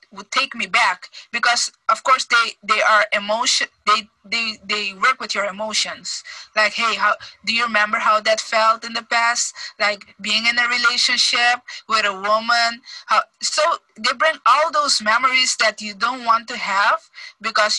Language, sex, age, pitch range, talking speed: English, female, 20-39, 200-235 Hz, 170 wpm